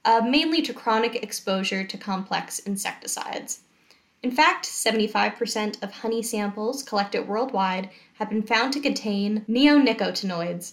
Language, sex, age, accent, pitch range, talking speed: English, female, 10-29, American, 195-240 Hz, 125 wpm